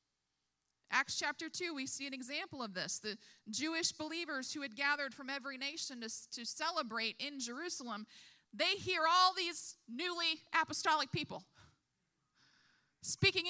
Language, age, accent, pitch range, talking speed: English, 30-49, American, 270-350 Hz, 140 wpm